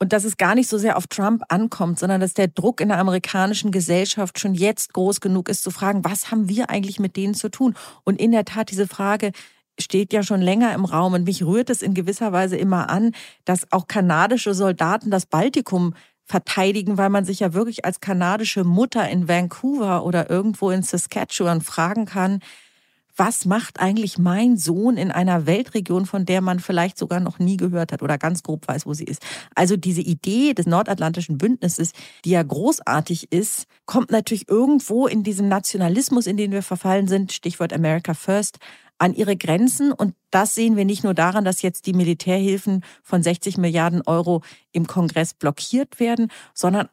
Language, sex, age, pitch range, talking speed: German, female, 40-59, 175-210 Hz, 190 wpm